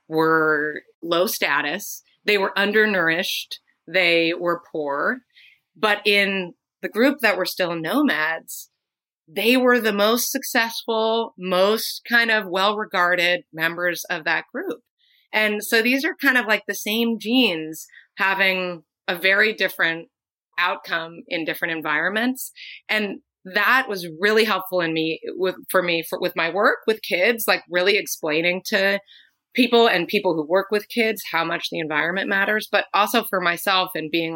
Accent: American